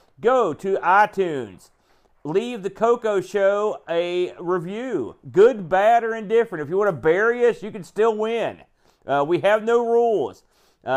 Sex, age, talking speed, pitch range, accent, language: male, 40-59, 155 wpm, 160-205 Hz, American, English